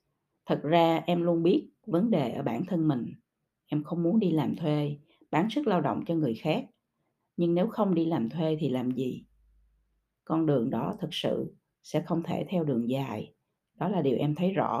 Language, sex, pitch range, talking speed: Vietnamese, female, 140-170 Hz, 205 wpm